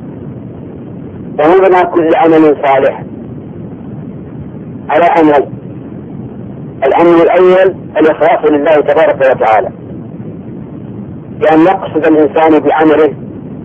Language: Arabic